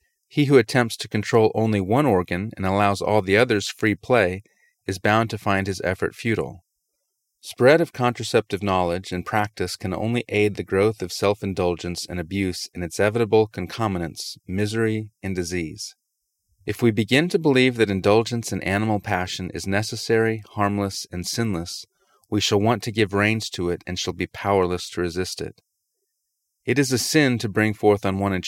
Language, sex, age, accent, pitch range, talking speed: English, male, 30-49, American, 90-110 Hz, 175 wpm